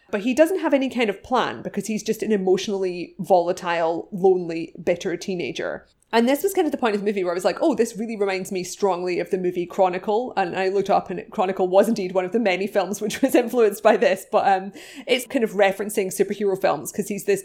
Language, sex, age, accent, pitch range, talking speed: English, female, 20-39, British, 180-210 Hz, 240 wpm